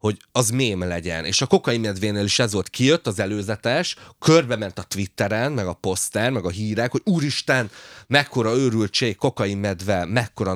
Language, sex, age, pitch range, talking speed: Hungarian, male, 30-49, 95-130 Hz, 170 wpm